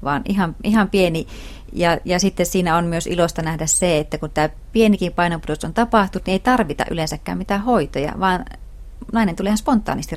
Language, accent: Finnish, native